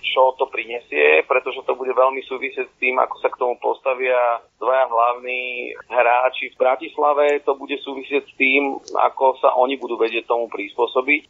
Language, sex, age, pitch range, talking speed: Slovak, male, 40-59, 115-140 Hz, 170 wpm